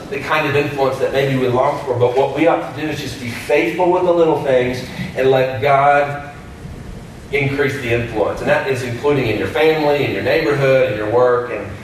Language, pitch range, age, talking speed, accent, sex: English, 140-175 Hz, 40-59, 220 wpm, American, male